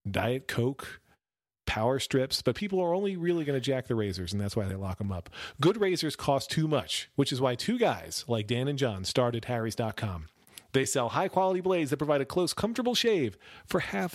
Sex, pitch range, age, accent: male, 110-150 Hz, 40-59, American